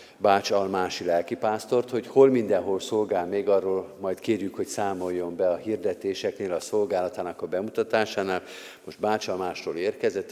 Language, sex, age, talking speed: Hungarian, male, 50-69, 130 wpm